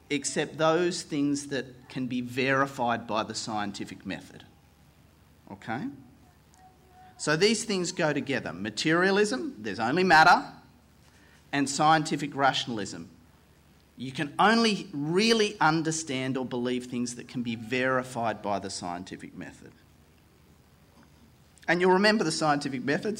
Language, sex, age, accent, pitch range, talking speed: English, male, 40-59, Australian, 105-145 Hz, 120 wpm